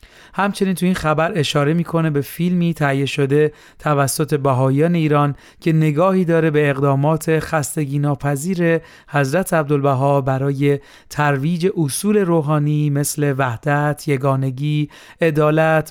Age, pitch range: 30-49, 140-170 Hz